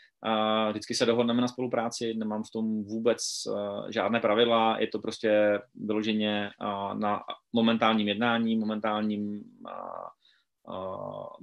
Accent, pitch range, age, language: native, 105-120 Hz, 30-49, Czech